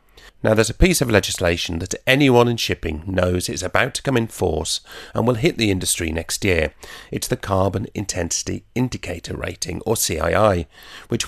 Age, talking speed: 40-59, 175 wpm